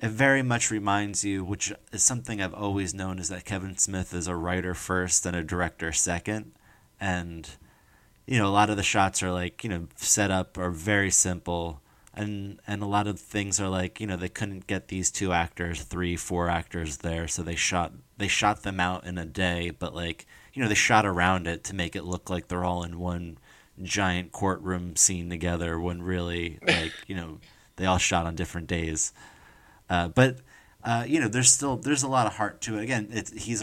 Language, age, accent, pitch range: English, 30-49, American, 85-105 Hz